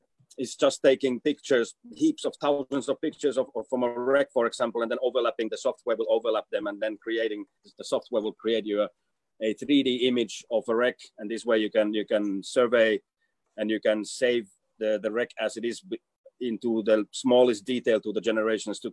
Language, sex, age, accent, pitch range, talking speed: English, male, 30-49, Finnish, 110-145 Hz, 205 wpm